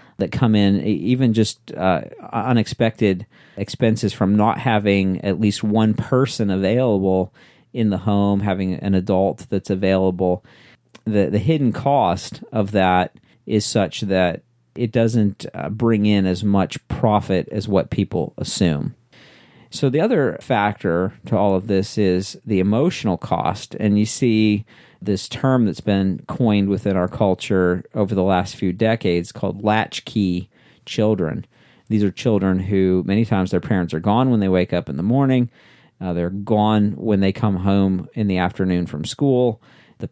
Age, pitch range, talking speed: 50-69, 95-115 Hz, 160 wpm